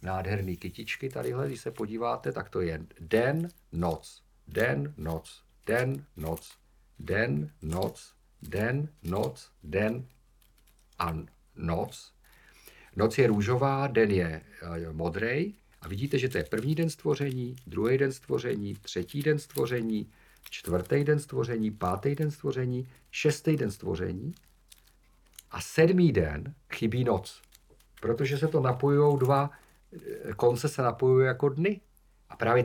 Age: 50-69